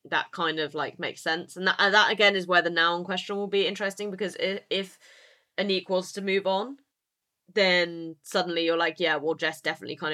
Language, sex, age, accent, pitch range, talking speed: English, female, 20-39, British, 155-180 Hz, 205 wpm